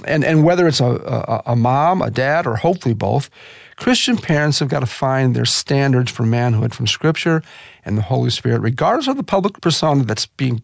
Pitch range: 130-180 Hz